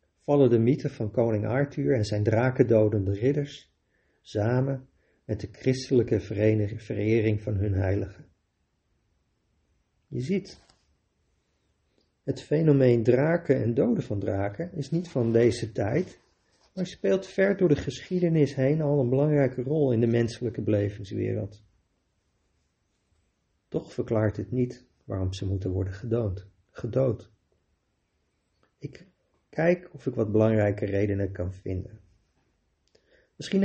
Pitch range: 105-135 Hz